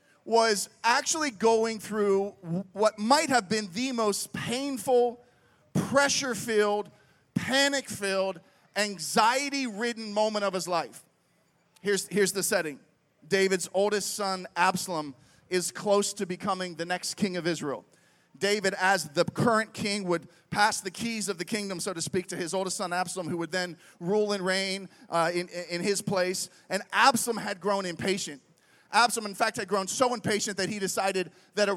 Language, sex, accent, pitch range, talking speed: English, male, American, 190-235 Hz, 155 wpm